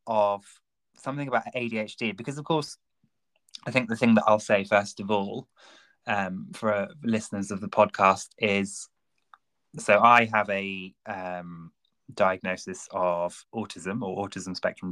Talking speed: 145 wpm